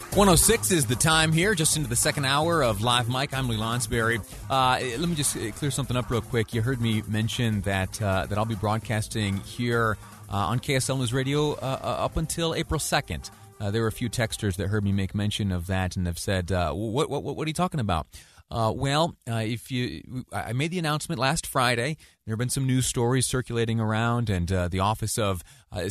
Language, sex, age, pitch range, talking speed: English, male, 30-49, 100-130 Hz, 220 wpm